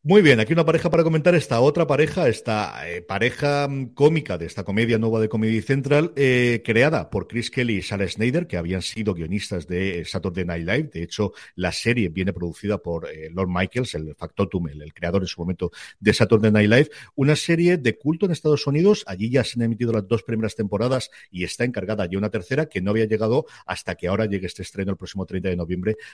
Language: Spanish